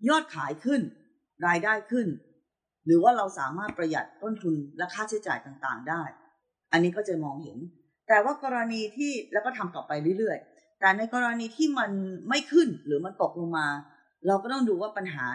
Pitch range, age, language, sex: 160-245 Hz, 20-39, Thai, female